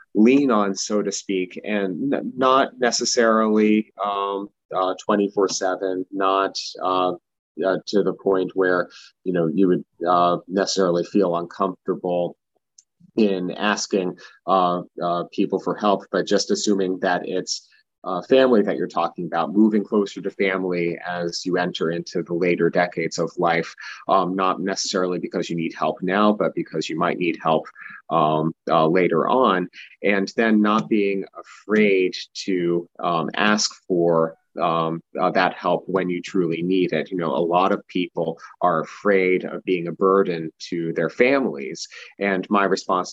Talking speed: 155 wpm